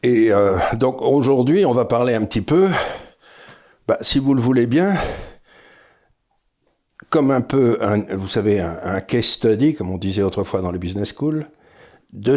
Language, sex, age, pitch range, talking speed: French, male, 60-79, 110-155 Hz, 170 wpm